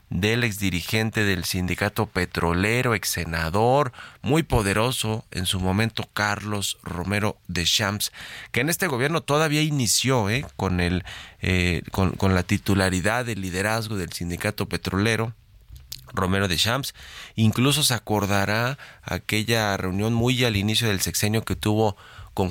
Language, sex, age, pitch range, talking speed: Spanish, male, 30-49, 90-110 Hz, 135 wpm